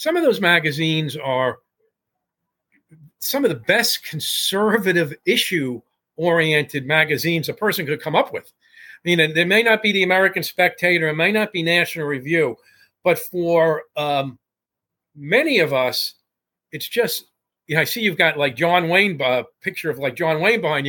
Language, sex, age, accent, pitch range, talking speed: English, male, 50-69, American, 145-195 Hz, 165 wpm